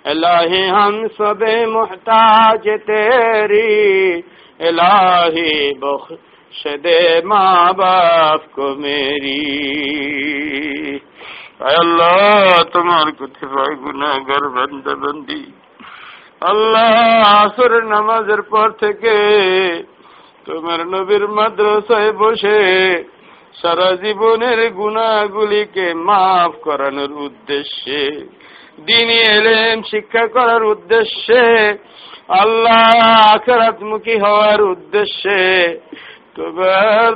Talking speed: 35 wpm